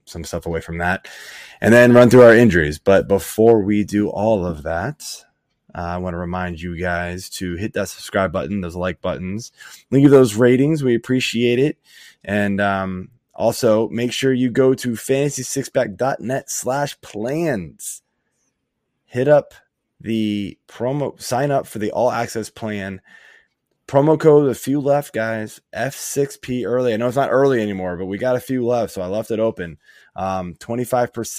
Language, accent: English, American